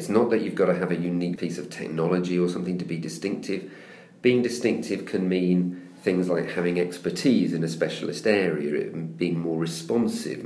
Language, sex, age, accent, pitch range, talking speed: English, male, 40-59, British, 85-95 Hz, 185 wpm